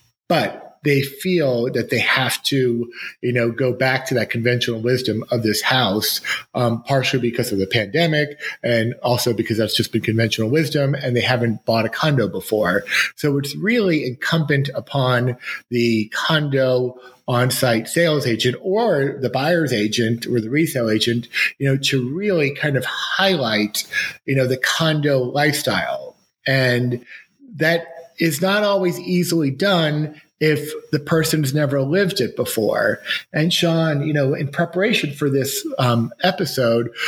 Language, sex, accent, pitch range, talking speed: English, male, American, 120-155 Hz, 150 wpm